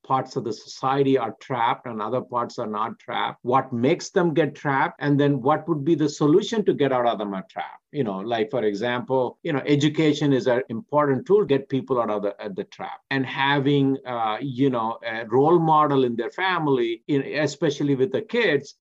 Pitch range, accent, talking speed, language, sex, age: 115-145 Hz, Indian, 215 wpm, English, male, 50-69